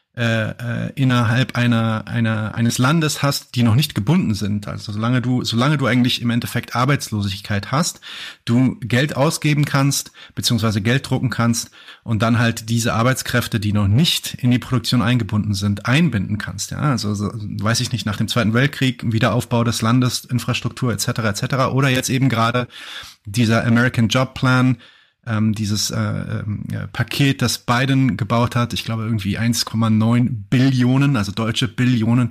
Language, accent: German, German